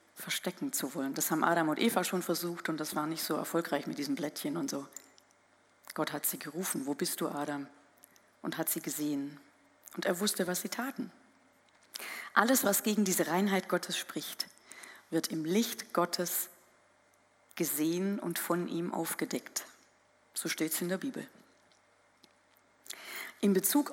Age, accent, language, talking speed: 40-59, German, German, 160 wpm